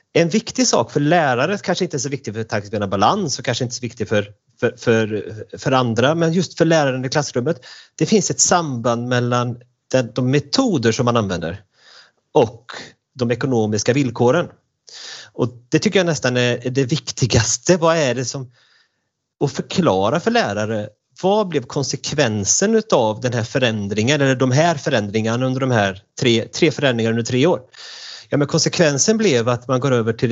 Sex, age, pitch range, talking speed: male, 30-49, 120-155 Hz, 170 wpm